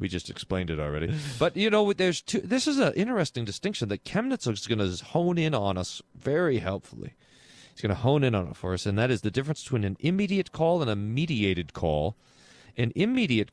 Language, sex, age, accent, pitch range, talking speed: English, male, 40-59, American, 105-155 Hz, 225 wpm